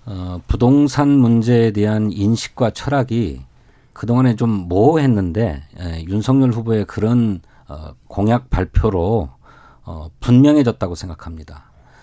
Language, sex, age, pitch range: Korean, male, 40-59, 105-140 Hz